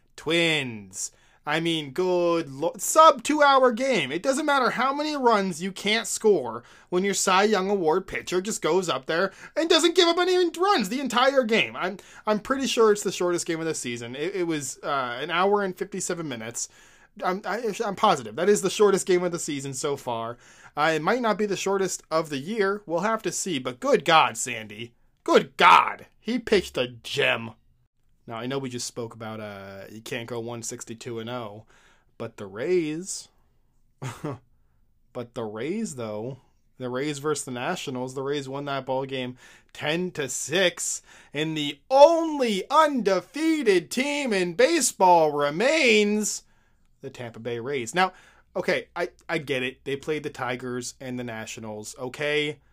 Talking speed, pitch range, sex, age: 170 wpm, 125-205 Hz, male, 20-39